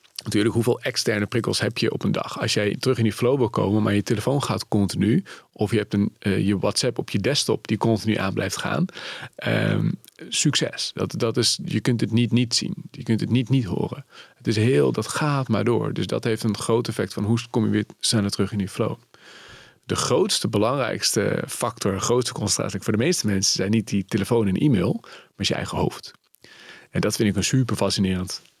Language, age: Dutch, 40-59